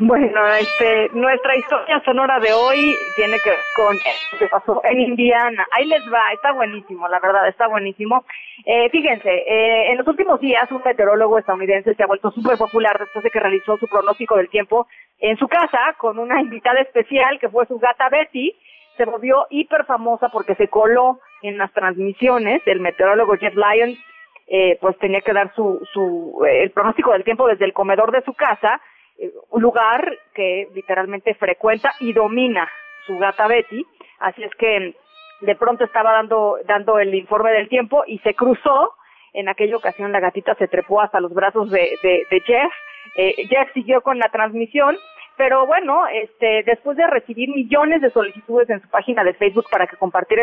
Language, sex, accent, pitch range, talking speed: Spanish, female, Mexican, 200-260 Hz, 185 wpm